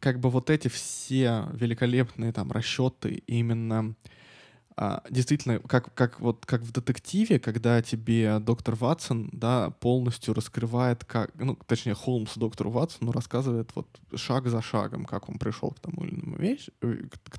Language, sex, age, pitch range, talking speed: Russian, male, 20-39, 115-140 Hz, 150 wpm